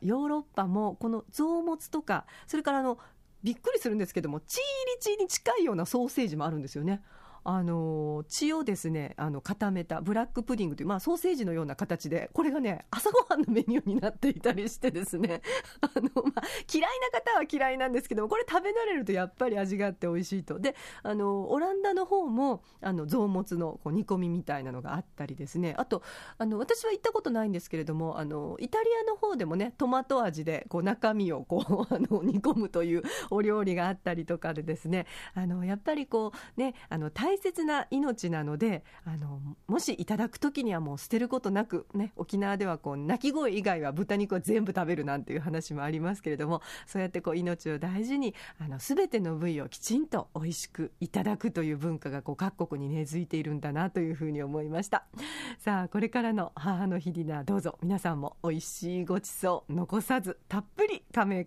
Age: 40-59